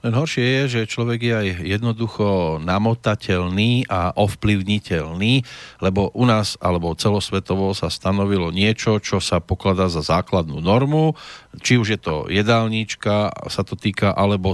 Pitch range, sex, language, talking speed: 95-115 Hz, male, Slovak, 140 wpm